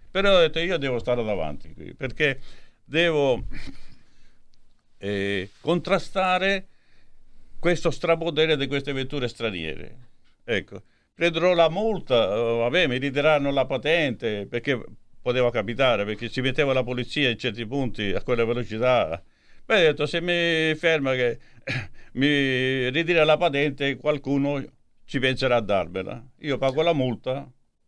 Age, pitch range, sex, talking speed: 50-69, 115-145 Hz, male, 135 wpm